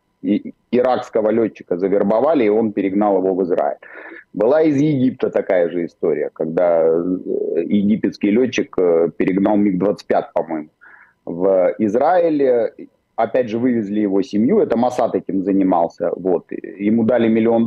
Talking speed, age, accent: 120 wpm, 30-49, native